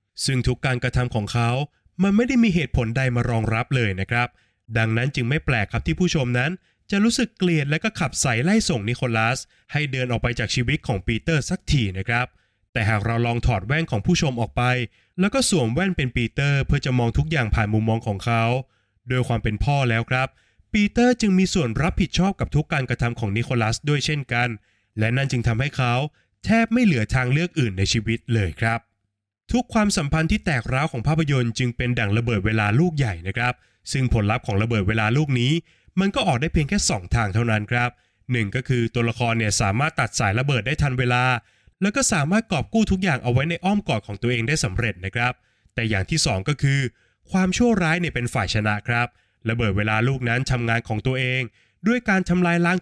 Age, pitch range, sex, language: 20-39, 115-160 Hz, male, Thai